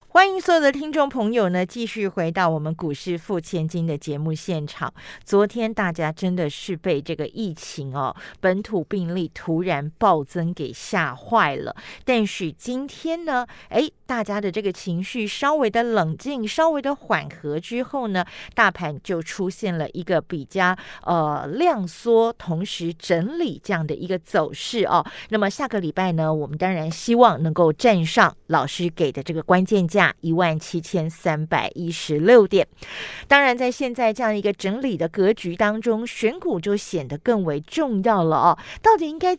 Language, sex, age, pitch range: Chinese, female, 40-59, 170-225 Hz